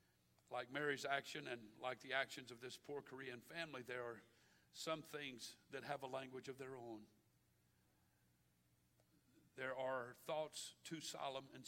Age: 50-69